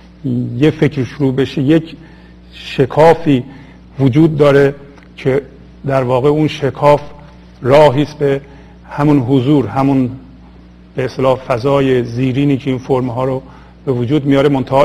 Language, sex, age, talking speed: Persian, male, 50-69, 125 wpm